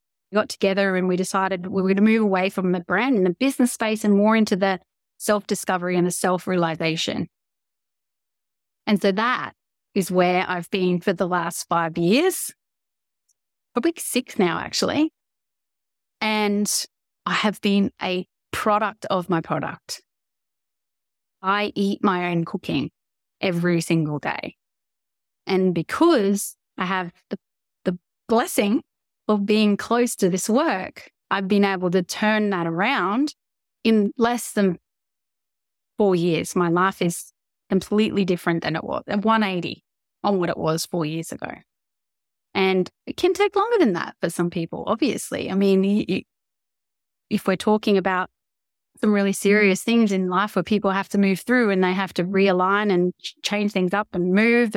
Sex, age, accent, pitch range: female, 30-49, Australian, 170-210 Hz